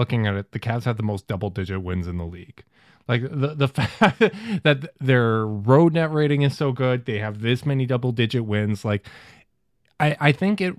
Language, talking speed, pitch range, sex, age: English, 200 wpm, 110-140 Hz, male, 20-39